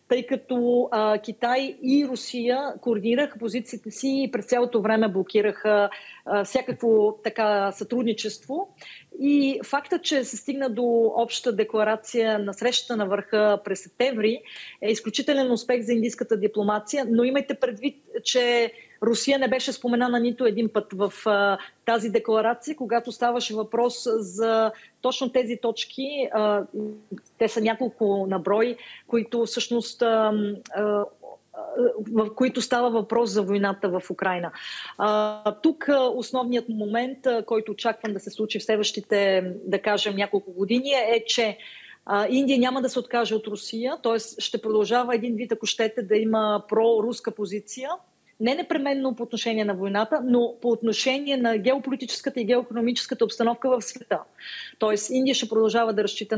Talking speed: 145 wpm